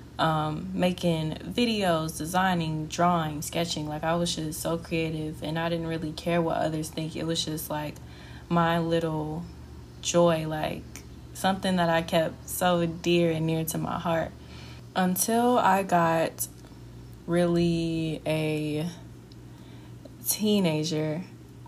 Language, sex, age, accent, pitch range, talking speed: English, female, 20-39, American, 155-175 Hz, 125 wpm